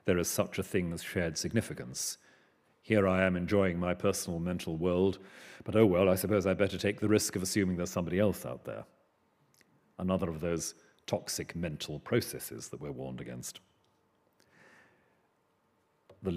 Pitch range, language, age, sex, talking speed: 85-105 Hz, English, 40-59, male, 160 wpm